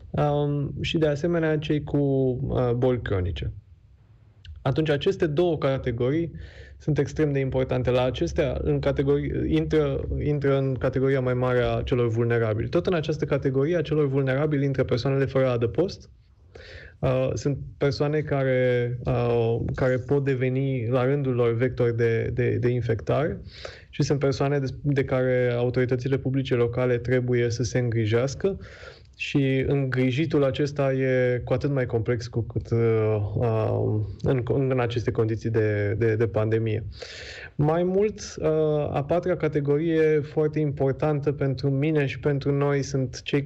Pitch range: 120-145 Hz